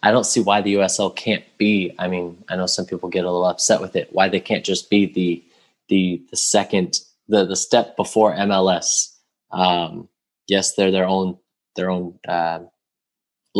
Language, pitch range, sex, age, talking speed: English, 90-110 Hz, male, 20-39, 185 wpm